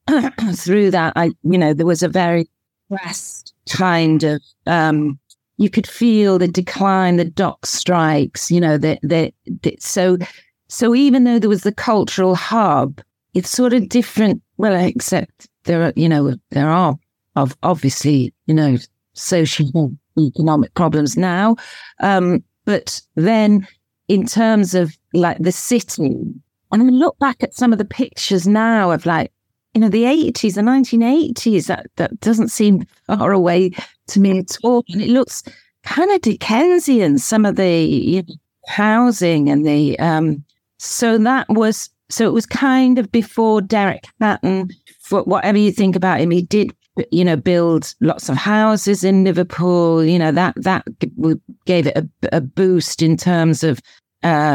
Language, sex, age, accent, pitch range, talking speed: English, female, 40-59, British, 160-220 Hz, 160 wpm